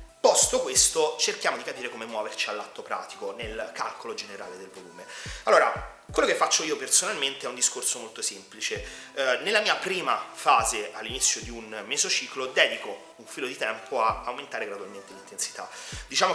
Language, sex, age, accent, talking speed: Italian, male, 30-49, native, 160 wpm